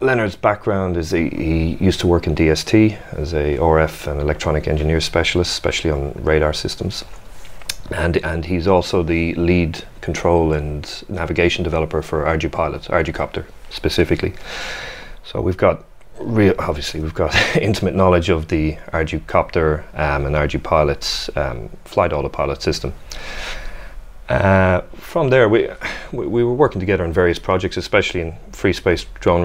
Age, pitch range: 30-49, 80-90 Hz